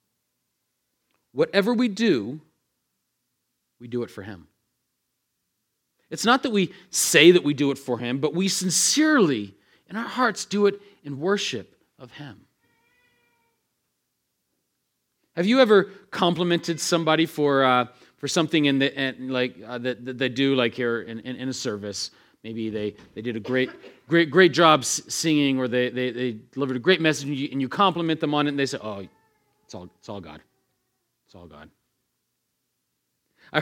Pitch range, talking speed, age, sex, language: 125-180 Hz, 170 wpm, 40-59, male, English